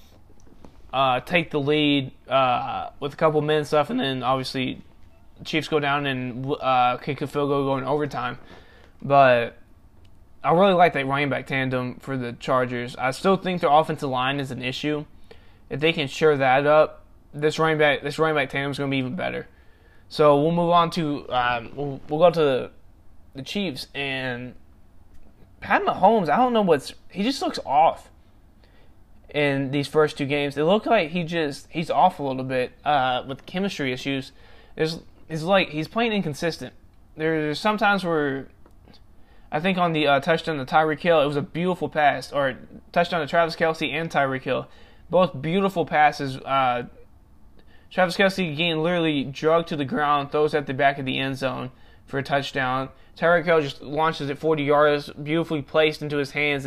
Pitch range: 130-160 Hz